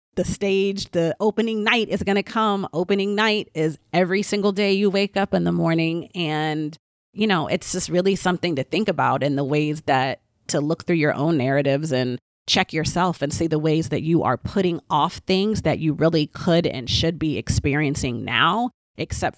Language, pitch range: English, 145-170 Hz